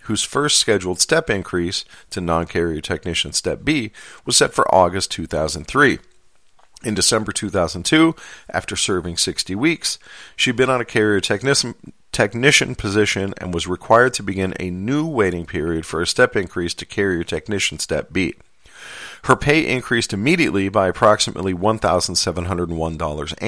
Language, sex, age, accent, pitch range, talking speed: English, male, 40-59, American, 85-110 Hz, 140 wpm